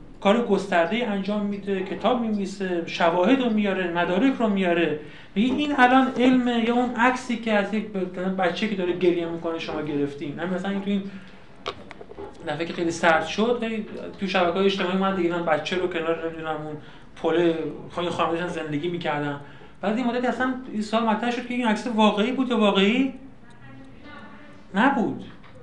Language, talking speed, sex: Persian, 160 wpm, male